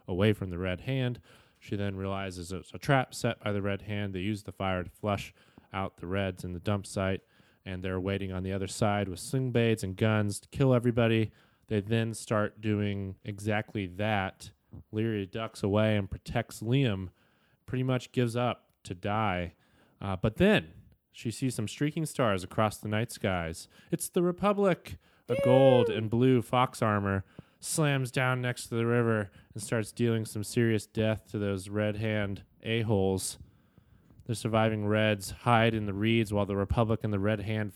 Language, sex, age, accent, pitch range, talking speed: English, male, 20-39, American, 95-115 Hz, 180 wpm